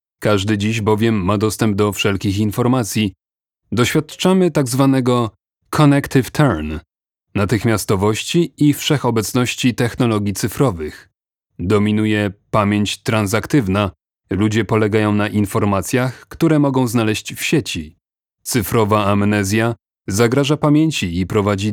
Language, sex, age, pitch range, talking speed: Polish, male, 30-49, 105-130 Hz, 100 wpm